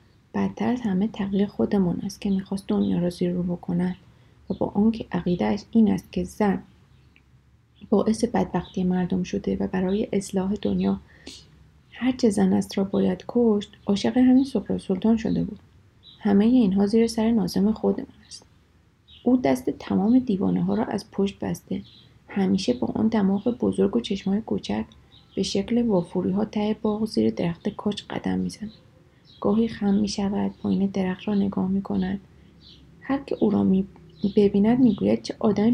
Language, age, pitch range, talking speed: Persian, 30-49, 180-220 Hz, 155 wpm